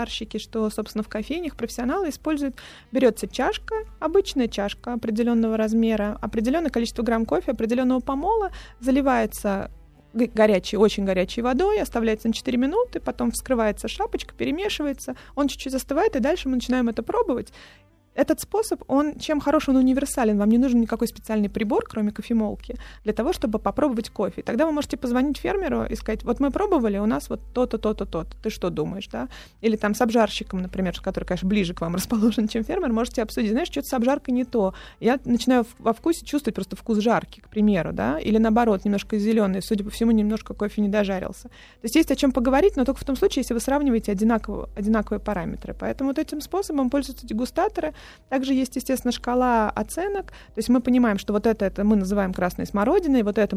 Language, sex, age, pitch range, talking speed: Russian, female, 20-39, 215-270 Hz, 185 wpm